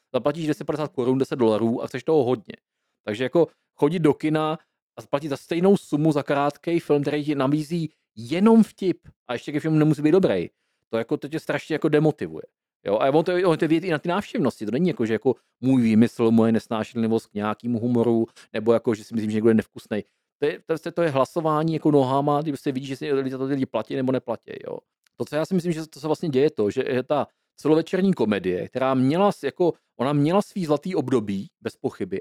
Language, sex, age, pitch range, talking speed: Czech, male, 40-59, 125-155 Hz, 225 wpm